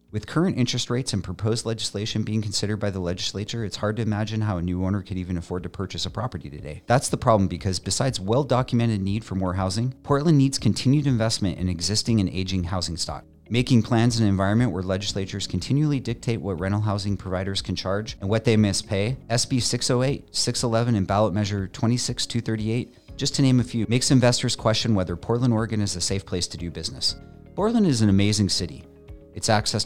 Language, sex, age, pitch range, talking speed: English, male, 40-59, 95-125 Hz, 200 wpm